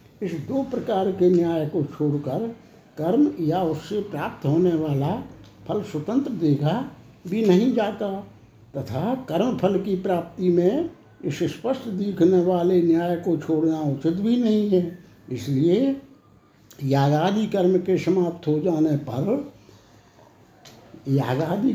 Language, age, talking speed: Hindi, 60-79, 125 wpm